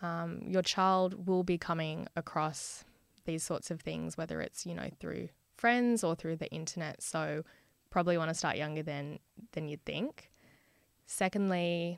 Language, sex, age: English, female, 10-29